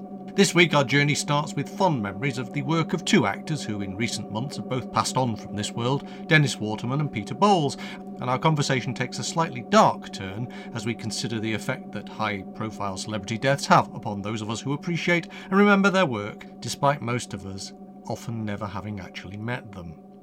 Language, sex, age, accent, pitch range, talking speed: English, male, 40-59, British, 110-180 Hz, 200 wpm